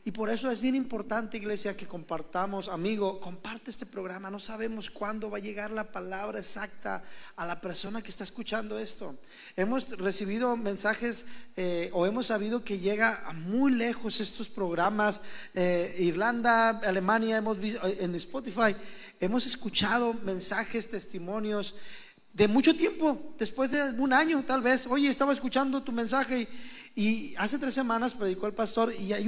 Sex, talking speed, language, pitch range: male, 160 wpm, Spanish, 190-235 Hz